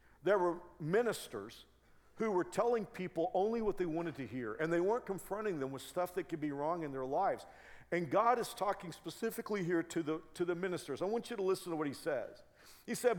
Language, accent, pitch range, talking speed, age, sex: English, American, 155-205 Hz, 225 wpm, 50-69, male